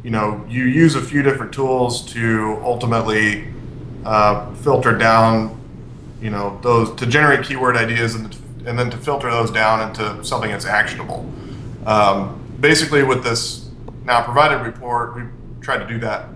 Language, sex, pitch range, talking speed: English, male, 110-125 Hz, 160 wpm